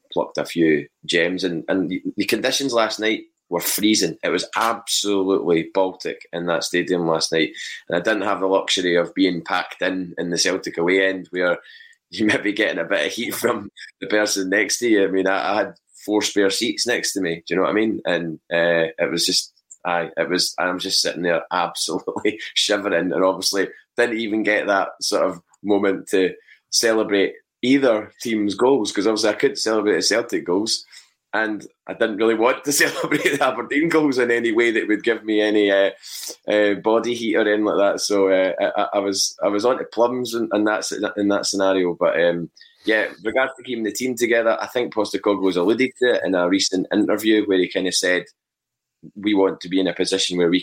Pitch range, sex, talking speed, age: 95-115 Hz, male, 210 wpm, 20-39